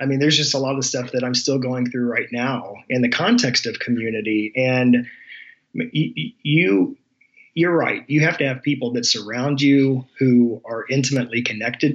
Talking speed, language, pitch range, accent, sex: 180 wpm, English, 120-140 Hz, American, male